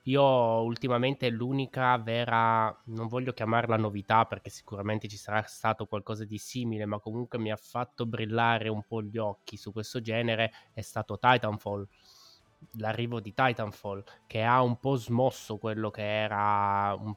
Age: 20-39